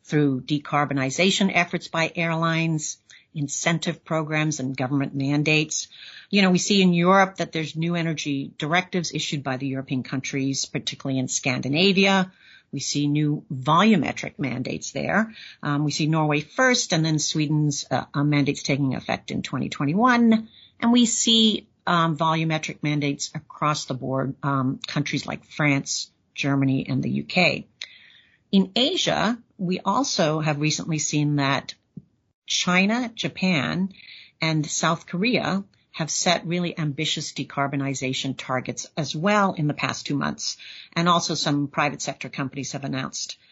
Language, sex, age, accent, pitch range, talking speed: English, female, 50-69, American, 145-185 Hz, 140 wpm